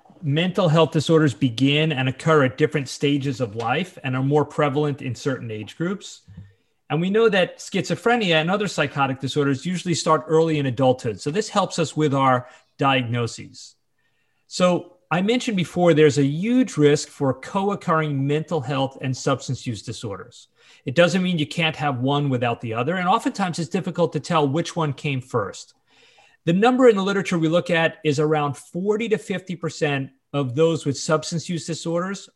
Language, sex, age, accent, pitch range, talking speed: English, male, 30-49, American, 135-175 Hz, 175 wpm